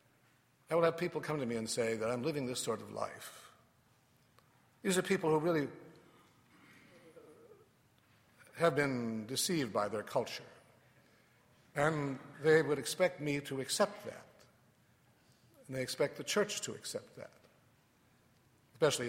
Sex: male